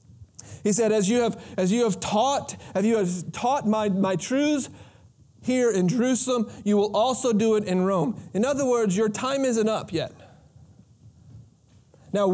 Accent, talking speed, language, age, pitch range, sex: American, 170 wpm, English, 30-49, 170-225 Hz, male